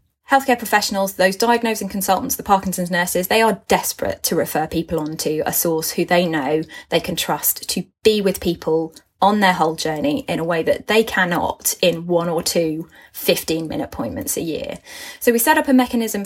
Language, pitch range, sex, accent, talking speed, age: English, 170-220 Hz, female, British, 190 wpm, 20-39